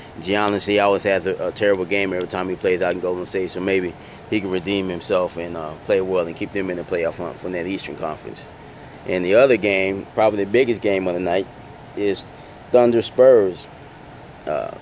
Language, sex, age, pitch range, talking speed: English, male, 20-39, 95-110 Hz, 210 wpm